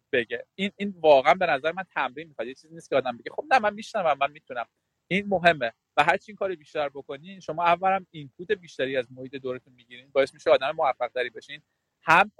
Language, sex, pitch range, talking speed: Persian, male, 135-195 Hz, 210 wpm